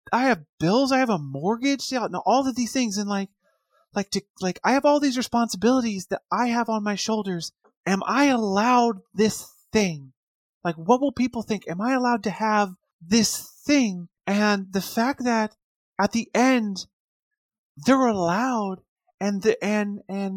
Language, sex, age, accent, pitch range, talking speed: English, male, 30-49, American, 200-245 Hz, 170 wpm